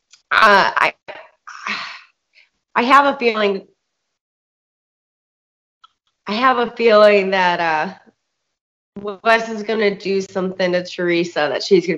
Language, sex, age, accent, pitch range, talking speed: English, female, 20-39, American, 180-215 Hz, 115 wpm